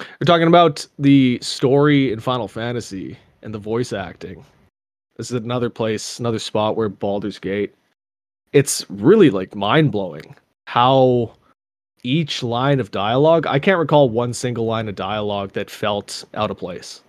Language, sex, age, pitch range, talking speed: English, male, 20-39, 100-130 Hz, 150 wpm